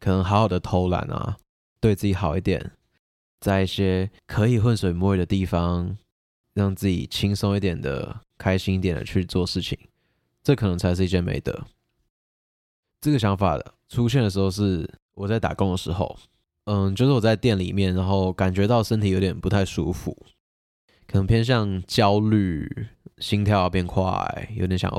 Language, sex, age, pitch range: Chinese, male, 20-39, 90-110 Hz